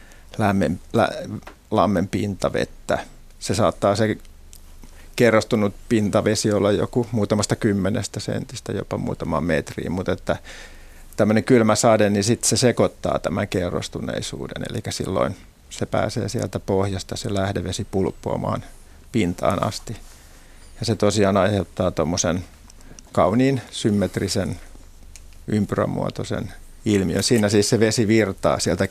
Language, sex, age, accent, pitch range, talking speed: Finnish, male, 50-69, native, 80-110 Hz, 110 wpm